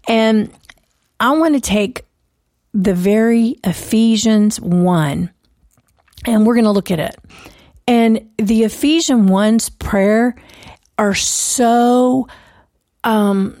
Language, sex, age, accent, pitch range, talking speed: English, female, 40-59, American, 190-230 Hz, 105 wpm